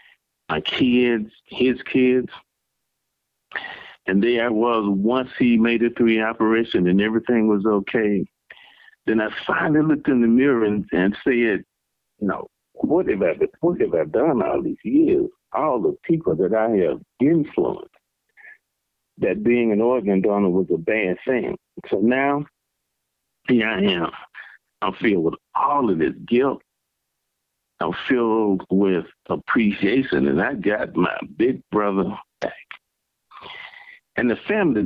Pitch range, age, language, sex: 105-130 Hz, 50-69, English, male